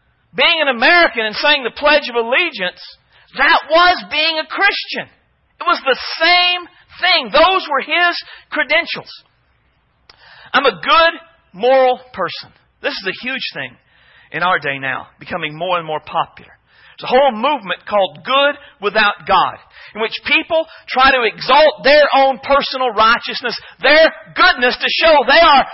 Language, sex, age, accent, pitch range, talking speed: English, male, 40-59, American, 240-330 Hz, 155 wpm